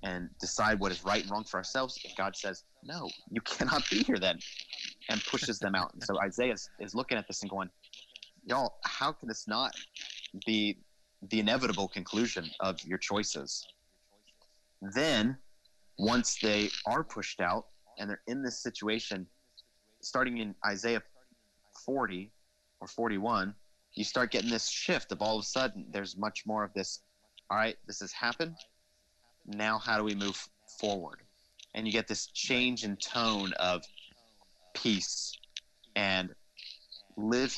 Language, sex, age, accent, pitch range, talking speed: English, male, 30-49, American, 100-120 Hz, 155 wpm